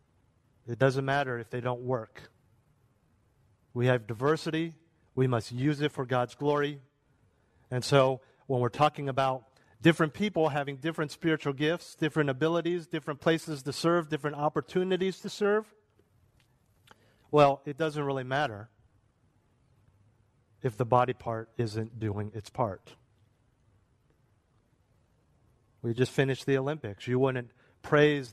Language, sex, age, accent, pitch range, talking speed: English, male, 40-59, American, 115-145 Hz, 125 wpm